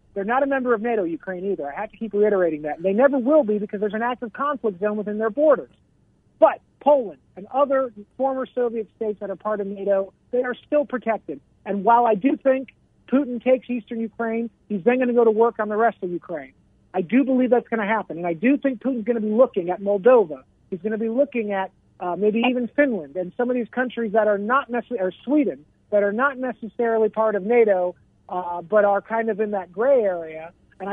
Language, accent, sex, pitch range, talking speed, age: English, American, male, 195-250 Hz, 235 wpm, 50-69